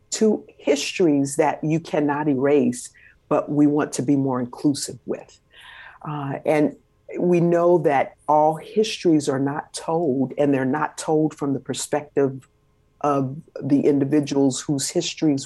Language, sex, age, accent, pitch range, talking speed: English, female, 50-69, American, 130-155 Hz, 140 wpm